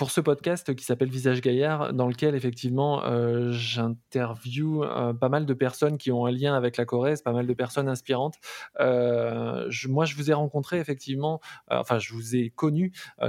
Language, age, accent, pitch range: French, 20-39, French, 120-145 Hz